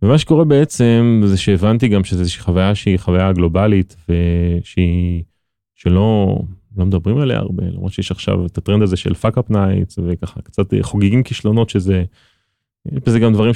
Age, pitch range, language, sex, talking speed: 30-49, 95-120 Hz, Hebrew, male, 160 wpm